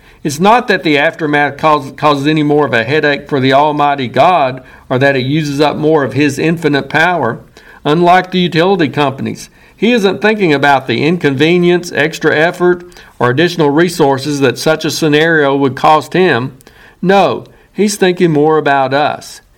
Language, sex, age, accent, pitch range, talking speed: English, male, 50-69, American, 140-170 Hz, 160 wpm